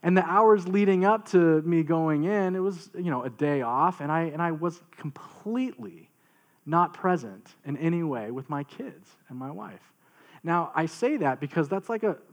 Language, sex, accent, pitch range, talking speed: English, male, American, 140-185 Hz, 200 wpm